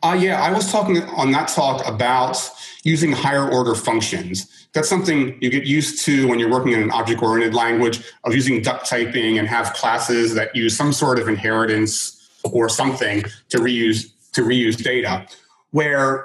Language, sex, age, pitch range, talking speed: English, male, 30-49, 115-135 Hz, 175 wpm